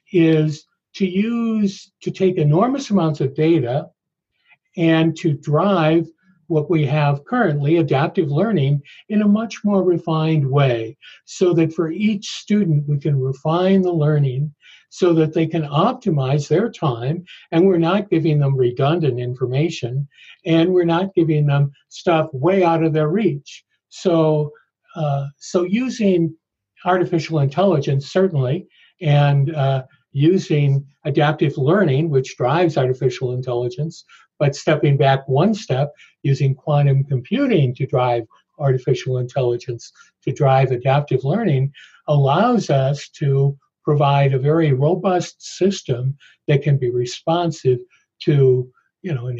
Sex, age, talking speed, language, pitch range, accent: male, 60-79, 130 wpm, English, 135-175 Hz, American